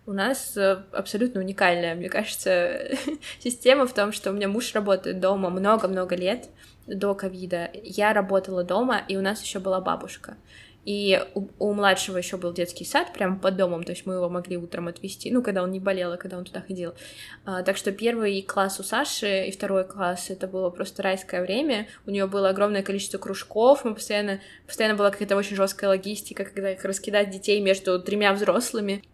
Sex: female